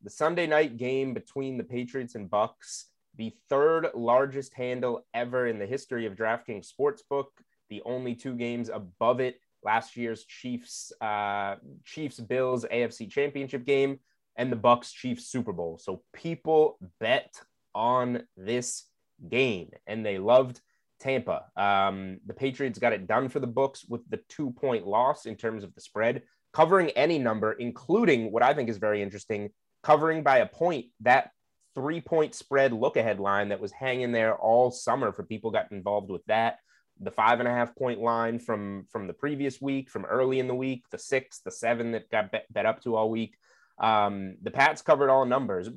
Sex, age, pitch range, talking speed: male, 20-39, 110-135 Hz, 180 wpm